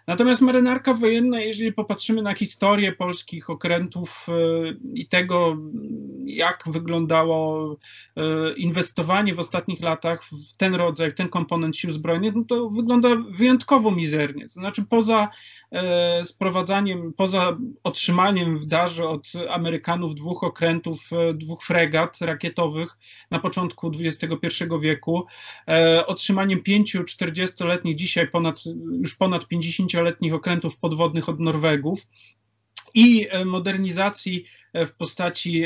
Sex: male